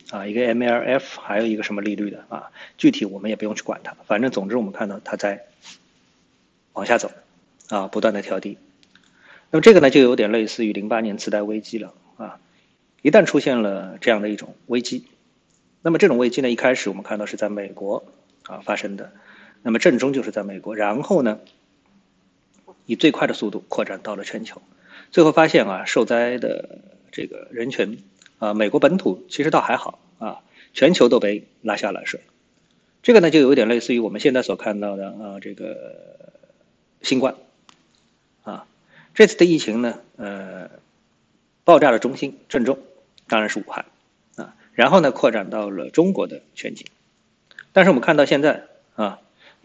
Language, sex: Chinese, male